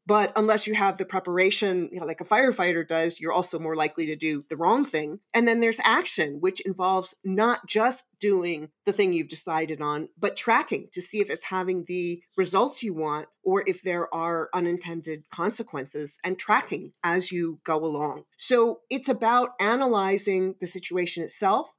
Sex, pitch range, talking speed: female, 175-210 Hz, 175 wpm